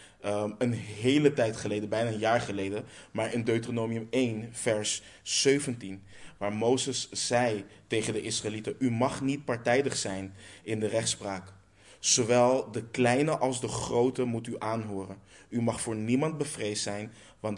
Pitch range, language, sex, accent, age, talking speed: 100-120 Hz, Dutch, male, Dutch, 20-39, 150 wpm